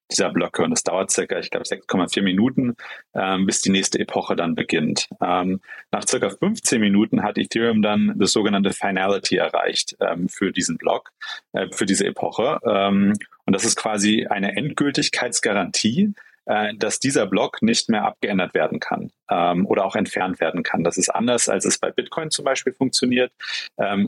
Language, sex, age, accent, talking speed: German, male, 30-49, German, 175 wpm